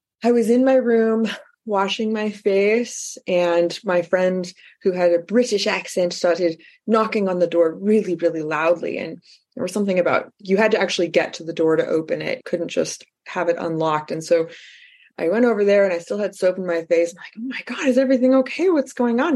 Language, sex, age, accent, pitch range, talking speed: English, female, 20-39, American, 170-225 Hz, 215 wpm